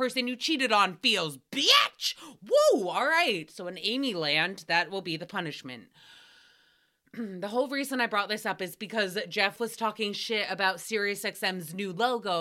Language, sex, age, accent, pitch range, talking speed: English, female, 20-39, American, 185-240 Hz, 170 wpm